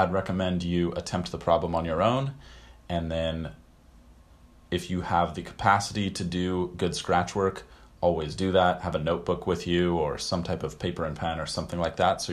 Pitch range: 80-95 Hz